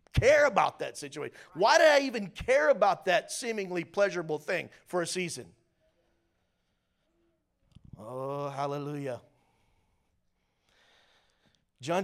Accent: American